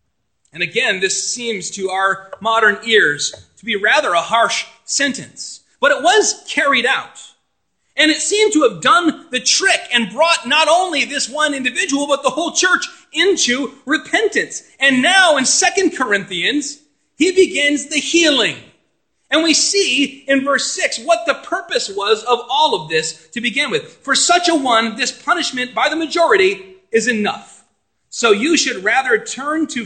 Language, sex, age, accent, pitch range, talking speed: English, male, 30-49, American, 215-320 Hz, 165 wpm